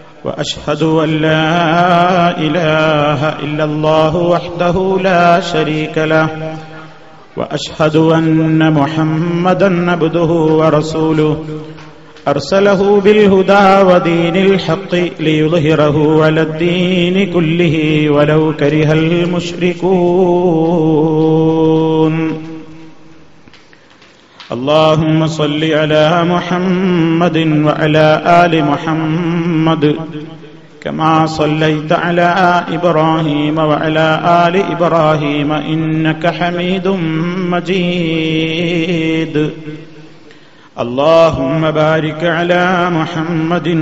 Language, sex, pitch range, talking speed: Malayalam, male, 155-175 Hz, 65 wpm